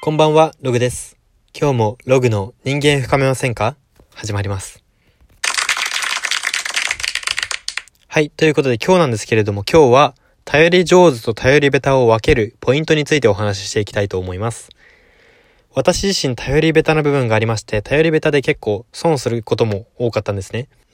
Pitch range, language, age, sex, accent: 115-155 Hz, Japanese, 20-39, male, native